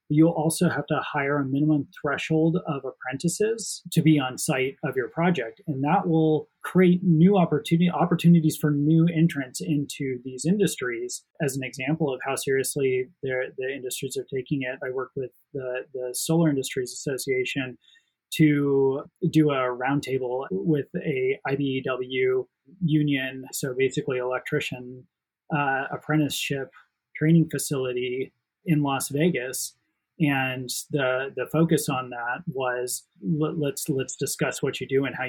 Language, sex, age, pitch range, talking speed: English, male, 30-49, 130-155 Hz, 140 wpm